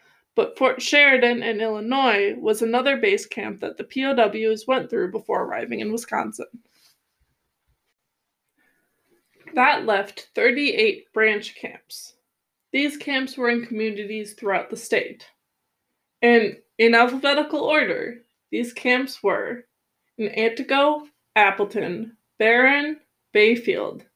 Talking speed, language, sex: 105 wpm, English, female